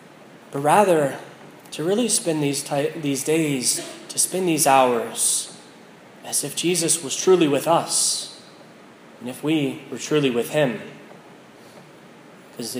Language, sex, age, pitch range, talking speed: English, male, 30-49, 135-180 Hz, 130 wpm